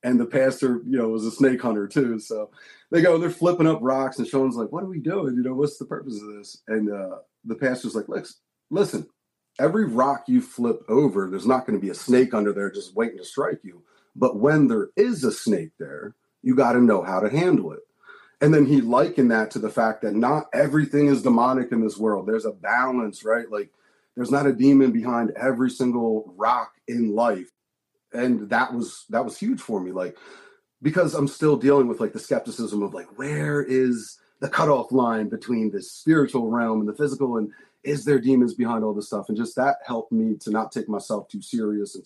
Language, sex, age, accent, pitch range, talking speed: English, male, 30-49, American, 110-140 Hz, 220 wpm